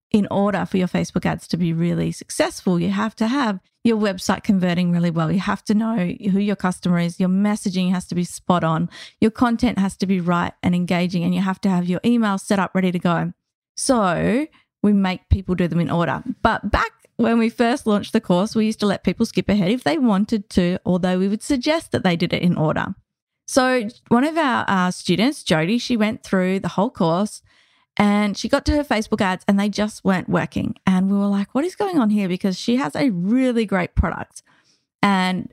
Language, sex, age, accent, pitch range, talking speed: English, female, 30-49, Australian, 185-240 Hz, 225 wpm